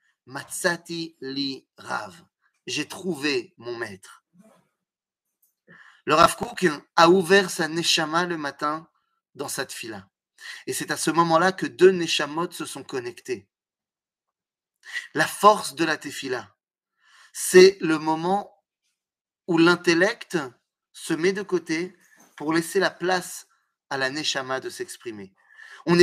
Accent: French